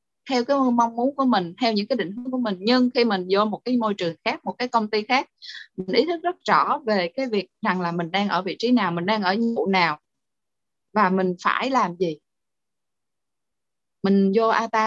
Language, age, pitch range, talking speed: Vietnamese, 20-39, 190-250 Hz, 230 wpm